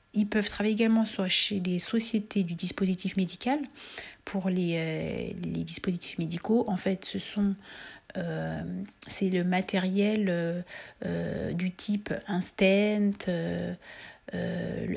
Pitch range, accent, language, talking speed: 175-210 Hz, French, French, 130 wpm